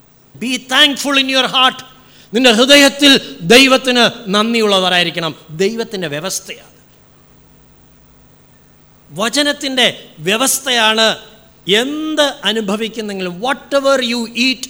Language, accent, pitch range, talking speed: Malayalam, native, 180-270 Hz, 75 wpm